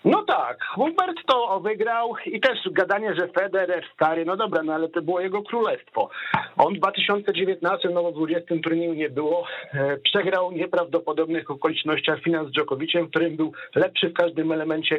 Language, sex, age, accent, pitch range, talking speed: Polish, male, 50-69, native, 160-195 Hz, 160 wpm